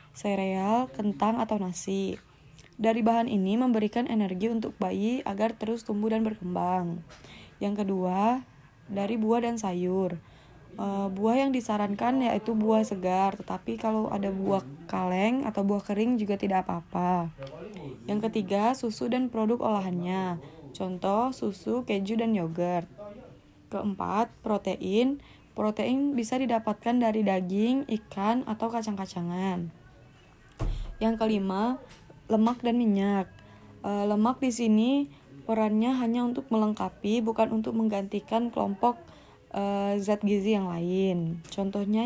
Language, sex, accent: Indonesian, female, native